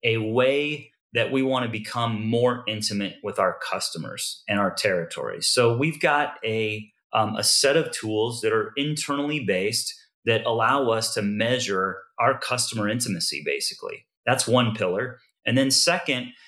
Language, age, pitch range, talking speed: English, 30-49, 115-145 Hz, 155 wpm